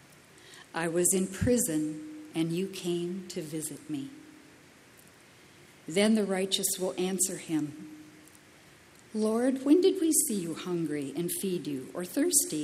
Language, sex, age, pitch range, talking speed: English, female, 50-69, 170-220 Hz, 135 wpm